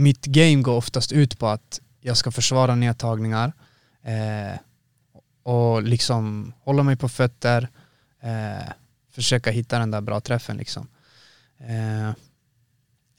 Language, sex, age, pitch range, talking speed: Swedish, male, 20-39, 120-135 Hz, 125 wpm